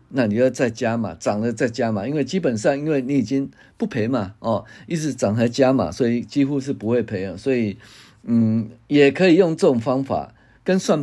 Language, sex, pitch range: Chinese, male, 115-160 Hz